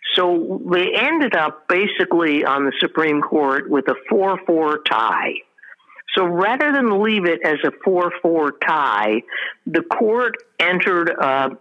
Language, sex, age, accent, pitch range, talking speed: English, female, 60-79, American, 145-220 Hz, 135 wpm